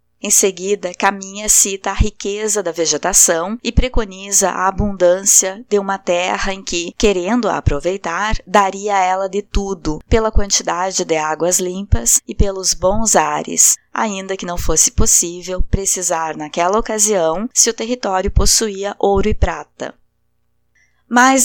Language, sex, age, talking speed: Portuguese, female, 20-39, 135 wpm